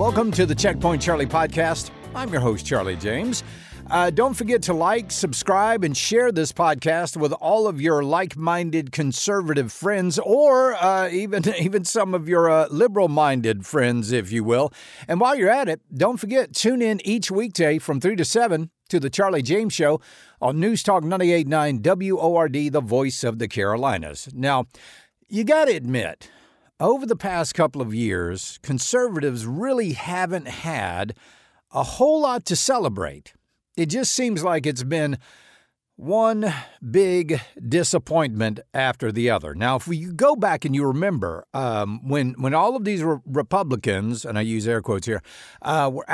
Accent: American